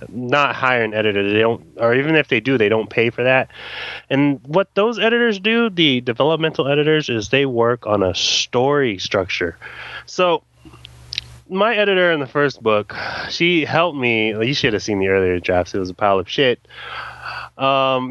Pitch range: 110-160 Hz